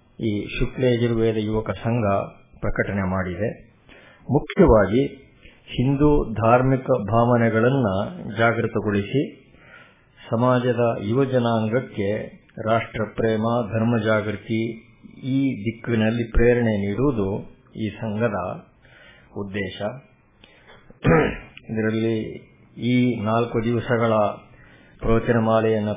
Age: 50-69